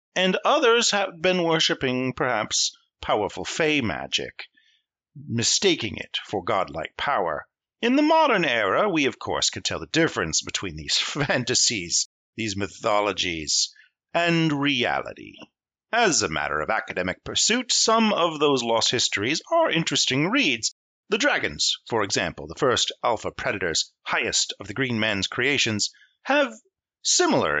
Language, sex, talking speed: English, male, 135 wpm